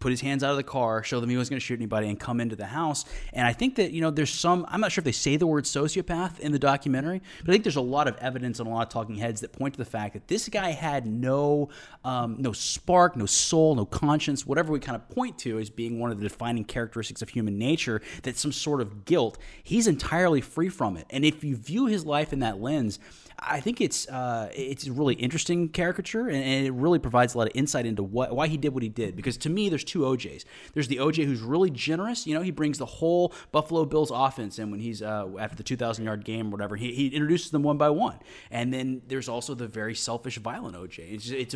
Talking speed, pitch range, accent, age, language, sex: 265 wpm, 115-155 Hz, American, 20-39, English, male